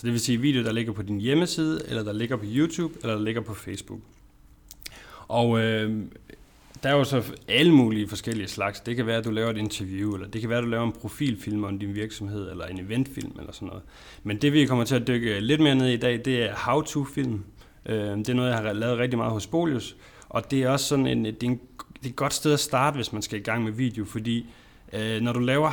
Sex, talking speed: male, 250 wpm